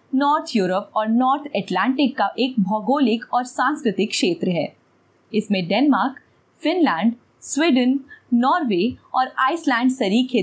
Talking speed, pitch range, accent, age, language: 115 wpm, 205-280 Hz, native, 20-39, Hindi